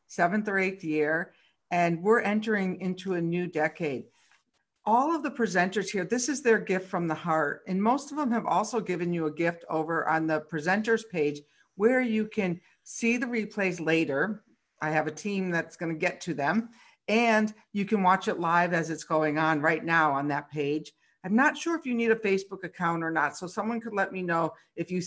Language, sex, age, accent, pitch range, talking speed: English, female, 50-69, American, 170-220 Hz, 215 wpm